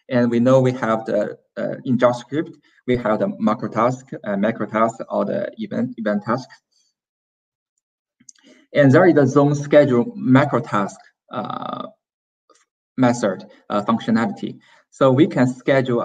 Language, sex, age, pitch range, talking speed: English, male, 20-39, 115-135 Hz, 130 wpm